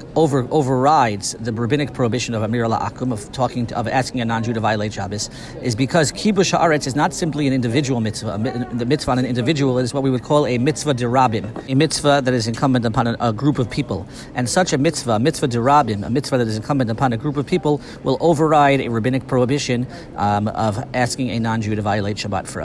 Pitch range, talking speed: 115-140 Hz, 225 wpm